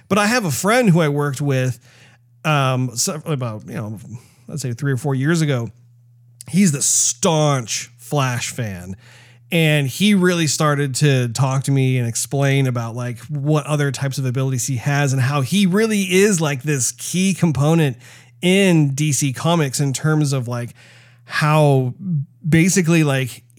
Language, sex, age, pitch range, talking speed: English, male, 30-49, 130-160 Hz, 160 wpm